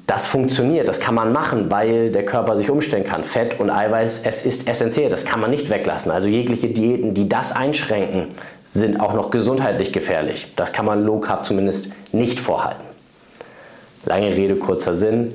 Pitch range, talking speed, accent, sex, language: 100-120 Hz, 180 wpm, German, male, German